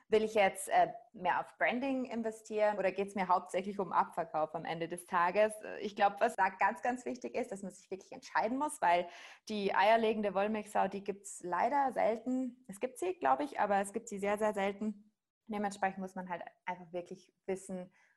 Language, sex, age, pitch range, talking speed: German, female, 20-39, 180-205 Hz, 200 wpm